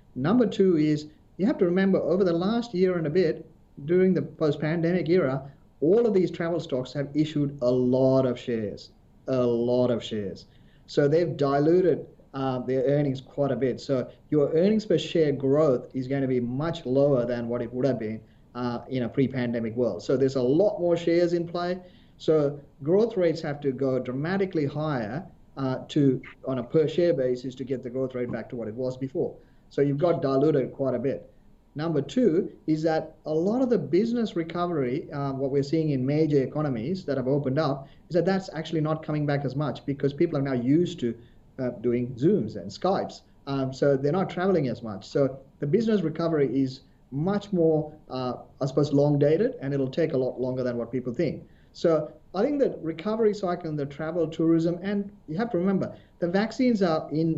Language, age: English, 30-49